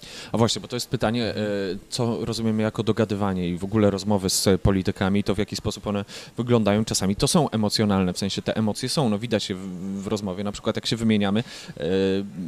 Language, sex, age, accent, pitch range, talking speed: Polish, male, 30-49, native, 100-120 Hz, 205 wpm